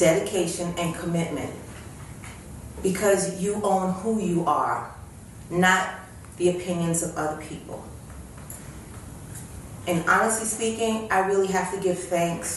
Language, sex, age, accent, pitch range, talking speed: English, female, 30-49, American, 160-200 Hz, 115 wpm